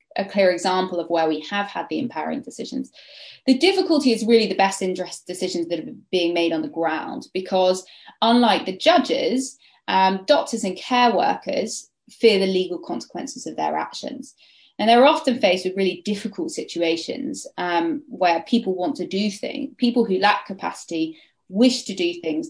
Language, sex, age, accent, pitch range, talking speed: English, female, 20-39, British, 180-260 Hz, 175 wpm